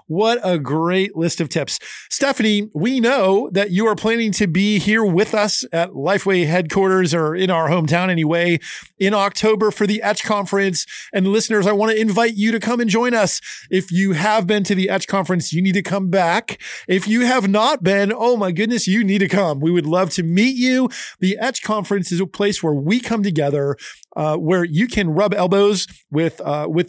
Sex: male